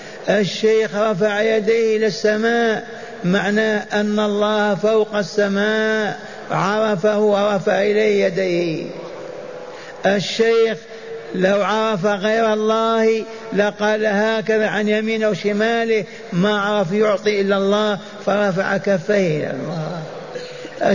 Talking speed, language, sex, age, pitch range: 90 wpm, Arabic, male, 50-69, 190-220 Hz